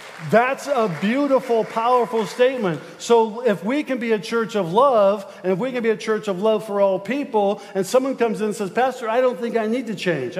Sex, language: male, English